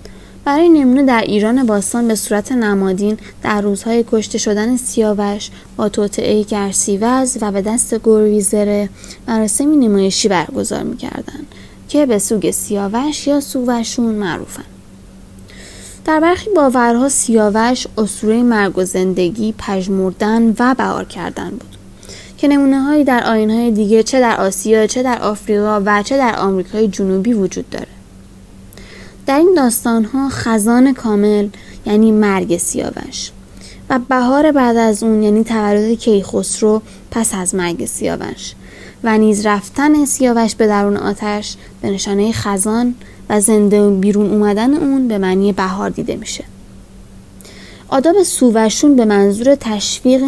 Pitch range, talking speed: 200-240 Hz, 130 wpm